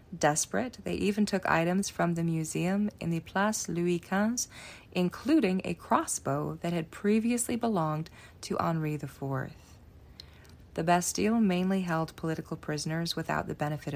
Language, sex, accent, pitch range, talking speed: English, female, American, 140-185 Hz, 140 wpm